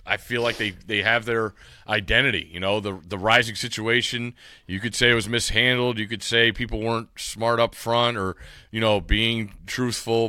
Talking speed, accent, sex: 190 wpm, American, male